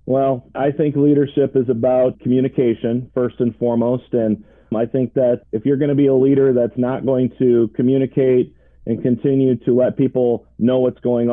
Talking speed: 180 wpm